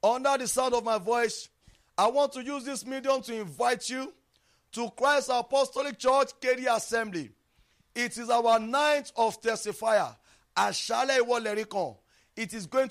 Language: English